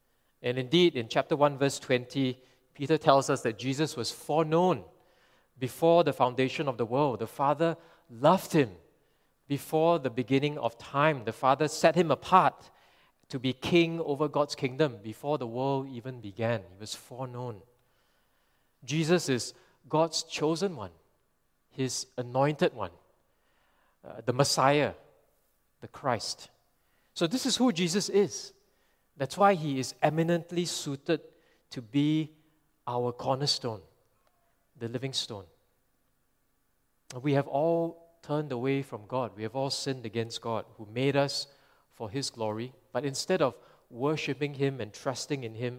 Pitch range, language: 125-155 Hz, English